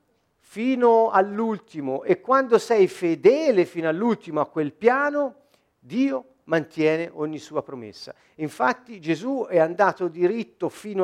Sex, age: male, 50-69